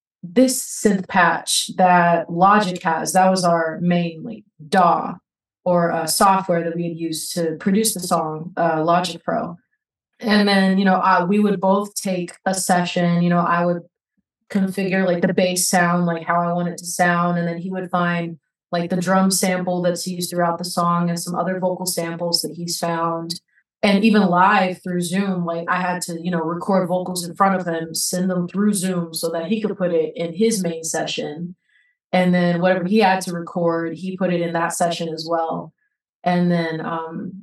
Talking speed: 195 wpm